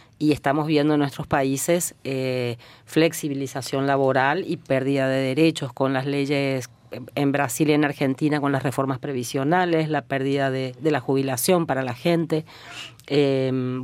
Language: Spanish